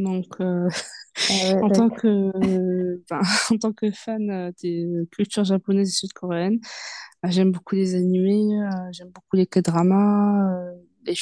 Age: 20-39